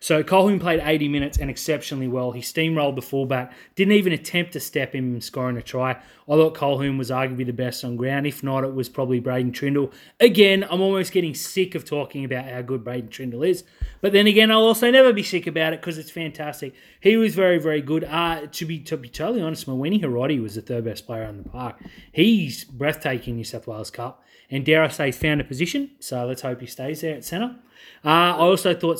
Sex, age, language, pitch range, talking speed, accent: male, 30-49, English, 130-170 Hz, 230 wpm, Australian